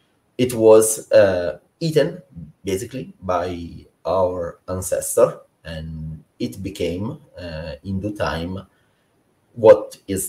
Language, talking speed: English, 100 wpm